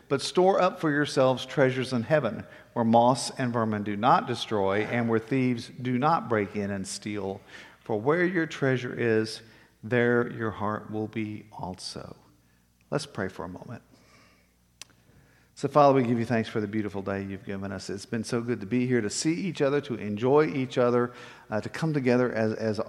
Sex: male